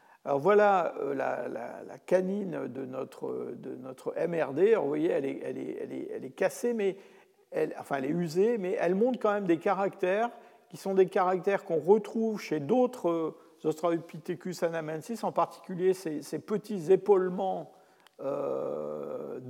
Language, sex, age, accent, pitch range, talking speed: French, male, 50-69, French, 165-245 Hz, 135 wpm